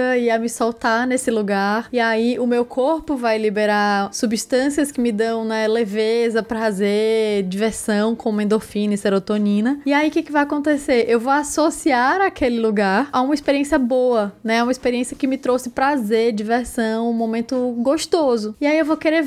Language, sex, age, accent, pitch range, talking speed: Portuguese, female, 10-29, Brazilian, 220-275 Hz, 175 wpm